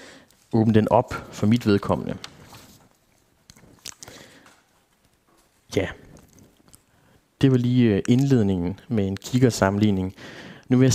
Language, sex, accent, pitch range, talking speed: Danish, male, native, 105-135 Hz, 95 wpm